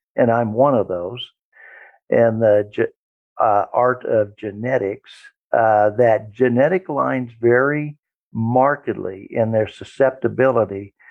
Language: Chinese